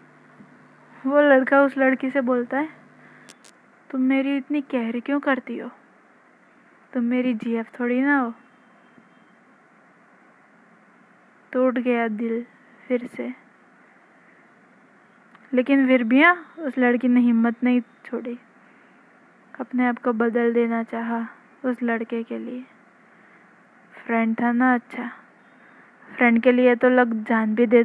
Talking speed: 120 wpm